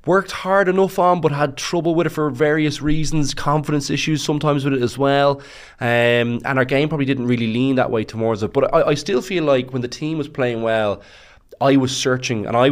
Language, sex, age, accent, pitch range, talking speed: English, male, 20-39, Irish, 105-135 Hz, 225 wpm